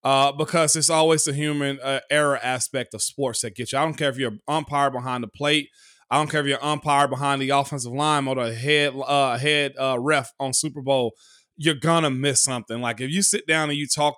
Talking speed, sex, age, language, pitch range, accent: 235 wpm, male, 30-49, English, 140-165 Hz, American